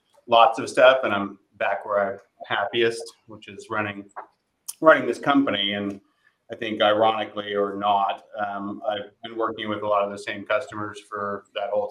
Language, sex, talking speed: English, male, 175 wpm